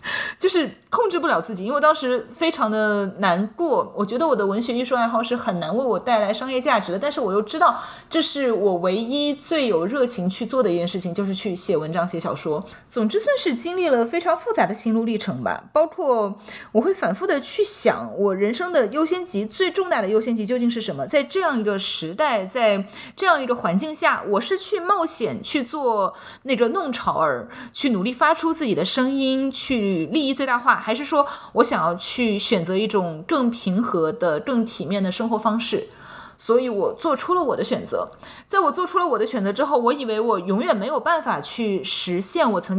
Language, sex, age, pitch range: Chinese, female, 20-39, 210-295 Hz